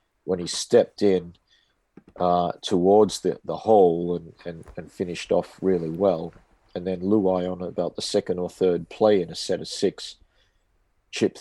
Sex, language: male, English